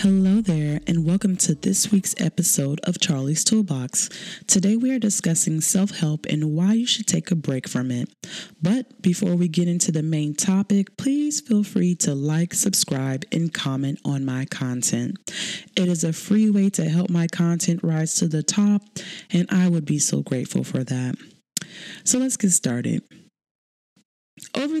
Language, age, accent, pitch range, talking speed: English, 20-39, American, 150-190 Hz, 170 wpm